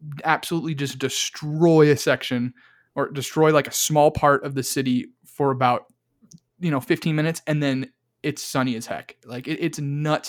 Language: English